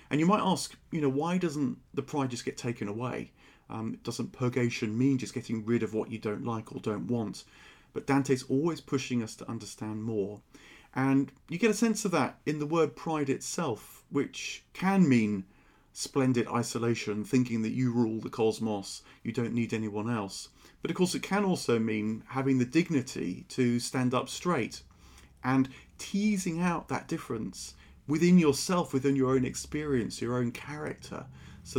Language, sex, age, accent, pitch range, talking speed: English, male, 40-59, British, 110-140 Hz, 175 wpm